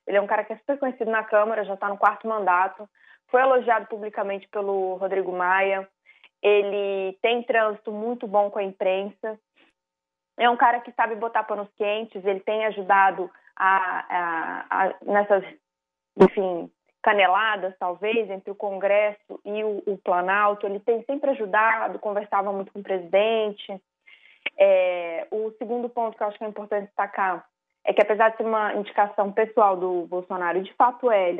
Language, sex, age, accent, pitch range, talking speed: Portuguese, female, 20-39, Brazilian, 190-220 Hz, 160 wpm